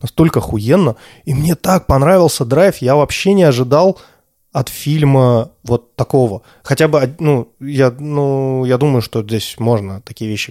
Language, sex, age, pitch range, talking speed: Russian, male, 20-39, 115-145 Hz, 150 wpm